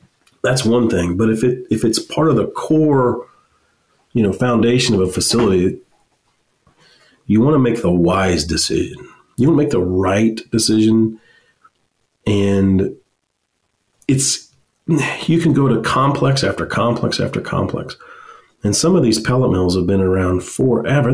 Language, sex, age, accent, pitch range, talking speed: English, male, 40-59, American, 105-140 Hz, 150 wpm